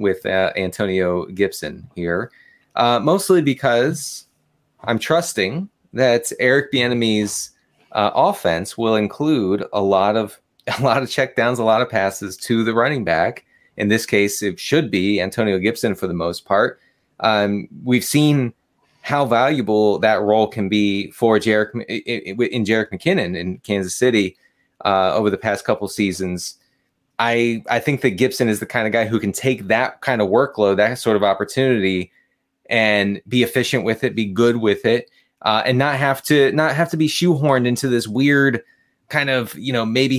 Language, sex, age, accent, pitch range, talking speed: English, male, 30-49, American, 100-130 Hz, 170 wpm